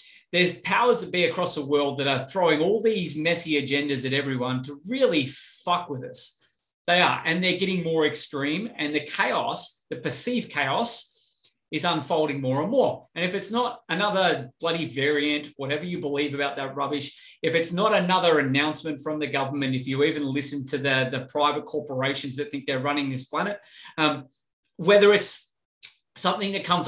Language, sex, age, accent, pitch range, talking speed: English, male, 30-49, Australian, 145-195 Hz, 180 wpm